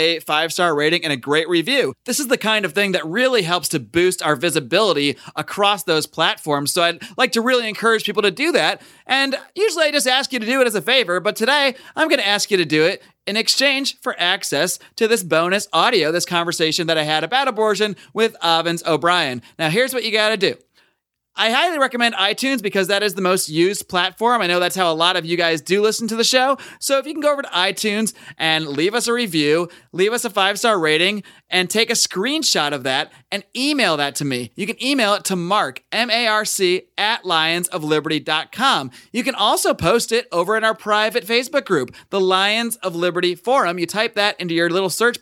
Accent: American